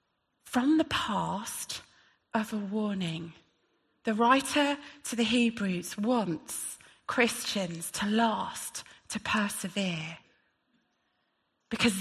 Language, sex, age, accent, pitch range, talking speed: English, female, 30-49, British, 190-250 Hz, 90 wpm